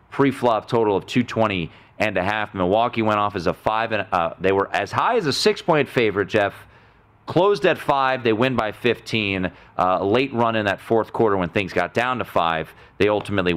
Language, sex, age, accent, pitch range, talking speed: English, male, 30-49, American, 100-135 Hz, 210 wpm